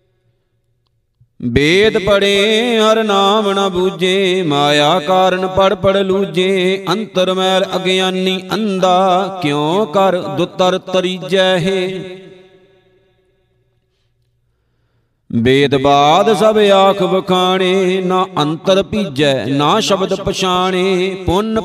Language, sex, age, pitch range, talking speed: Punjabi, male, 50-69, 175-195 Hz, 90 wpm